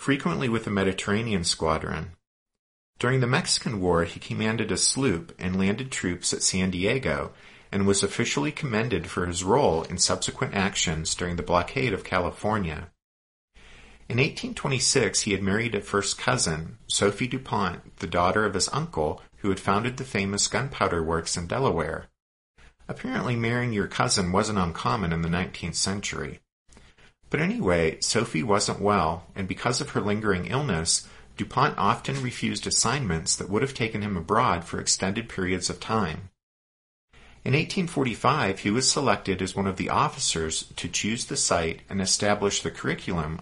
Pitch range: 90-115 Hz